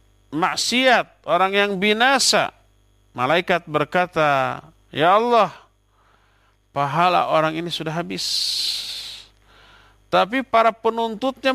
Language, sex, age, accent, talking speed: Indonesian, male, 50-69, native, 85 wpm